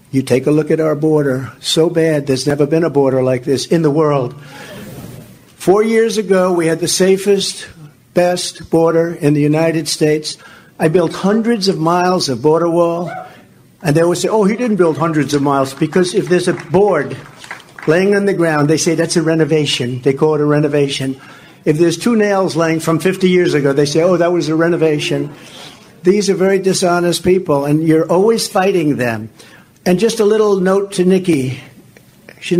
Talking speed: 190 wpm